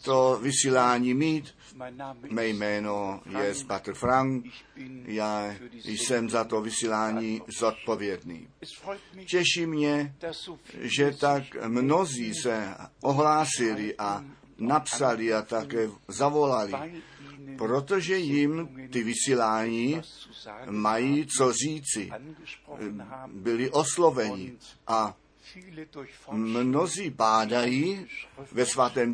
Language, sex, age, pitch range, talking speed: Czech, male, 50-69, 115-145 Hz, 80 wpm